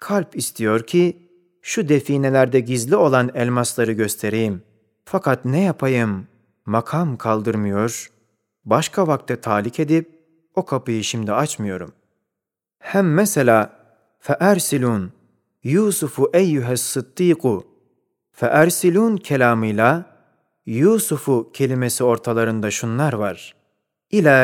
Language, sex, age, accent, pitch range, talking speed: Turkish, male, 30-49, native, 115-160 Hz, 95 wpm